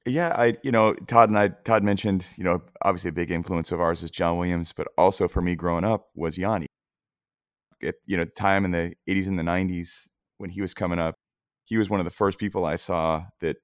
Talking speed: 235 wpm